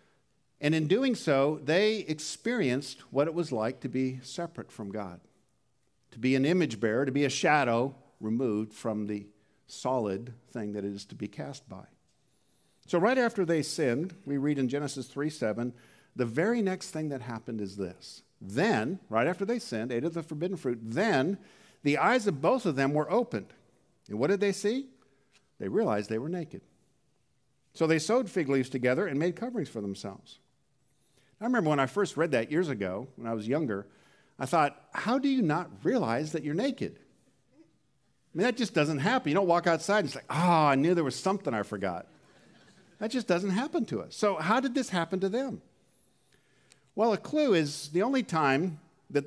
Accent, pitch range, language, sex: American, 125-195 Hz, English, male